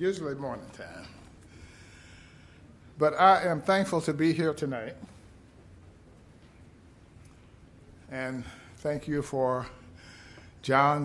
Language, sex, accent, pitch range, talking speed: English, male, American, 90-140 Hz, 85 wpm